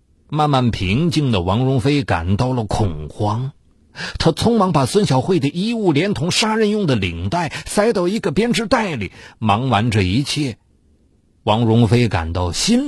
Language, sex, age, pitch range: Chinese, male, 50-69, 110-180 Hz